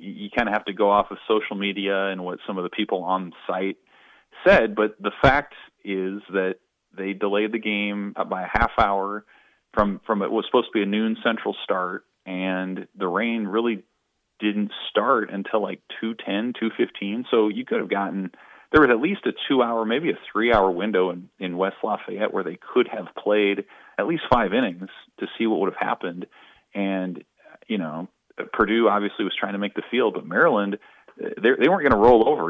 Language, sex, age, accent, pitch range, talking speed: English, male, 30-49, American, 95-110 Hz, 205 wpm